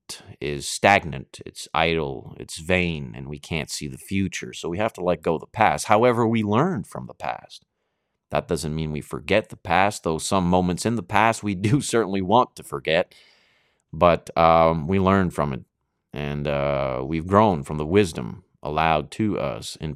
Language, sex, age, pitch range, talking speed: English, male, 30-49, 80-105 Hz, 190 wpm